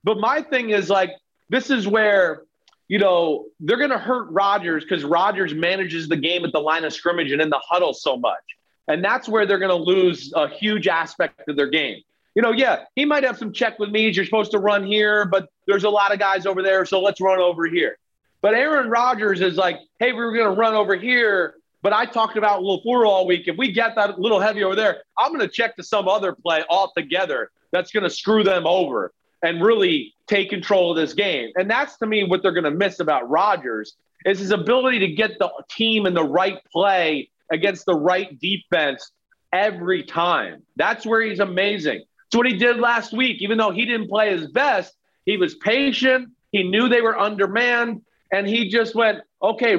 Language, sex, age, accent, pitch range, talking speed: English, male, 30-49, American, 190-230 Hz, 215 wpm